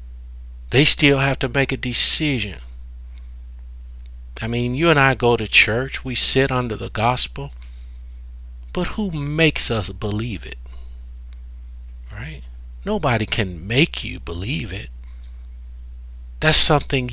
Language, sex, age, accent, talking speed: English, male, 60-79, American, 125 wpm